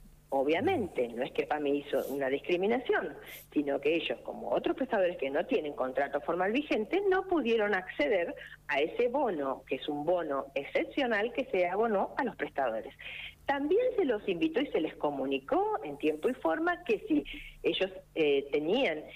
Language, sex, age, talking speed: Spanish, female, 40-59, 175 wpm